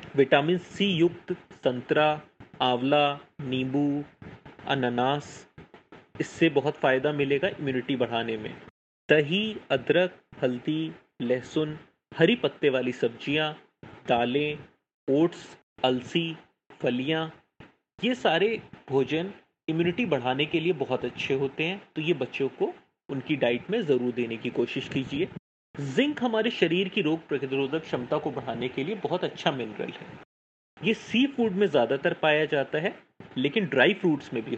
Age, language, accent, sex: 30-49, Hindi, native, male